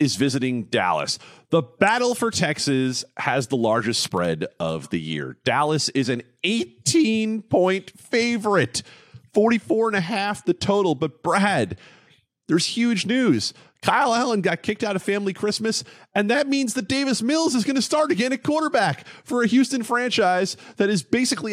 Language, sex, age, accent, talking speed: English, male, 30-49, American, 165 wpm